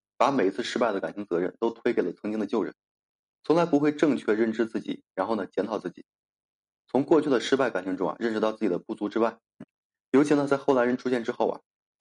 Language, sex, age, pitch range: Chinese, male, 20-39, 105-125 Hz